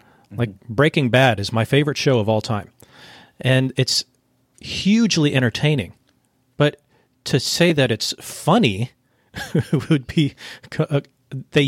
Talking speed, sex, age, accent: 115 wpm, male, 40-59, American